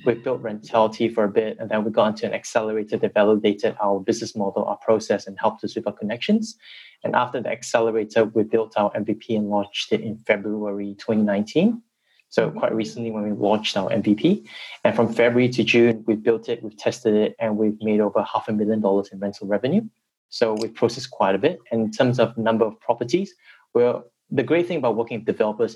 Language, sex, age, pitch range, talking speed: English, male, 20-39, 105-120 Hz, 210 wpm